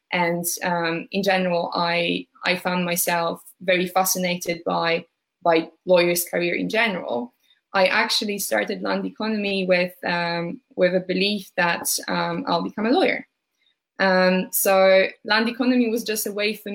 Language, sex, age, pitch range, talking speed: English, female, 20-39, 175-200 Hz, 145 wpm